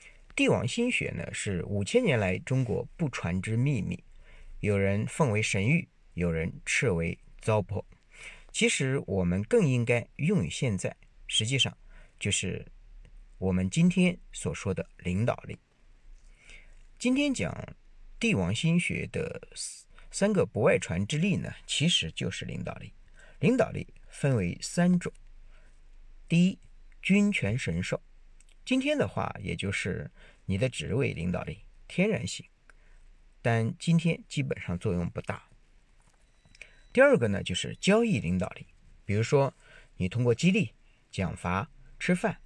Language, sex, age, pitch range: Chinese, male, 50-69, 95-155 Hz